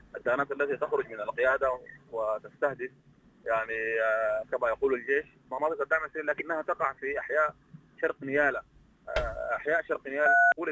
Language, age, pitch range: English, 30-49, 120-195 Hz